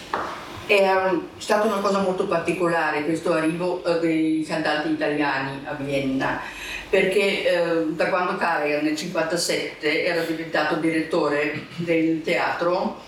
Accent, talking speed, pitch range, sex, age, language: native, 120 wpm, 155-190 Hz, female, 50-69, Italian